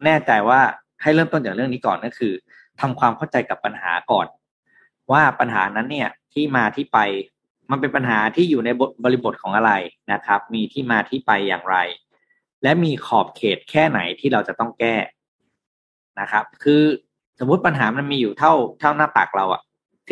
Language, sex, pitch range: Thai, male, 110-150 Hz